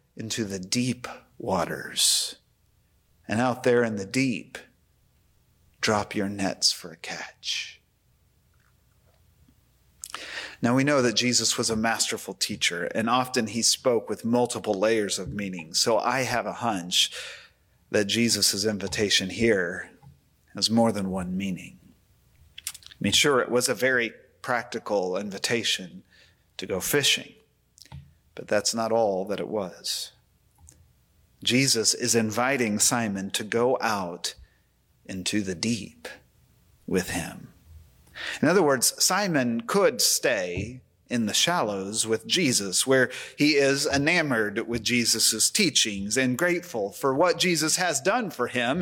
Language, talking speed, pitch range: English, 130 wpm, 100-125 Hz